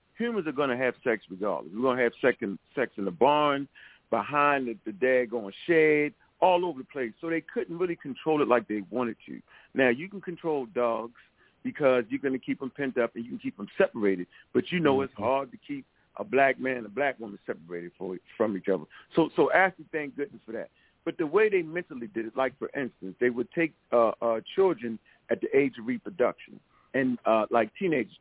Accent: American